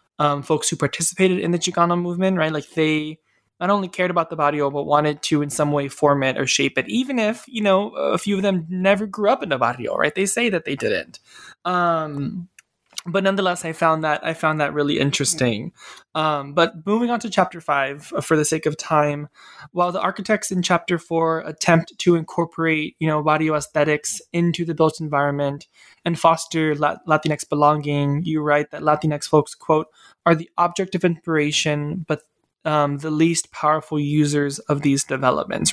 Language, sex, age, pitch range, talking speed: English, male, 20-39, 145-175 Hz, 190 wpm